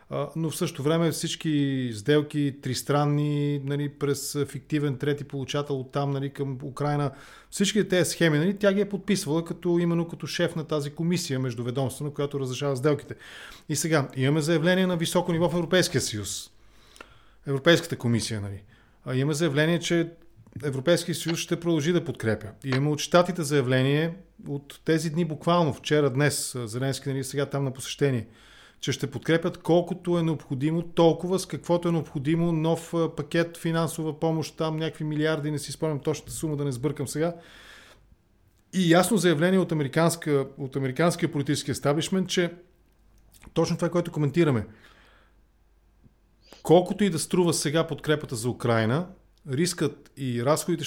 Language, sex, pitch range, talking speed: English, male, 135-165 Hz, 145 wpm